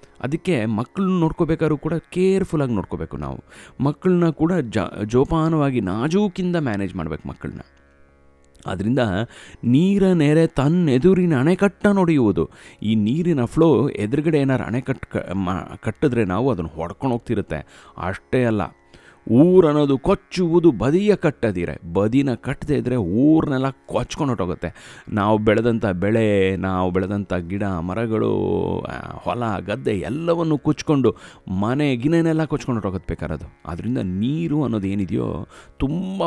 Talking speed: 100 wpm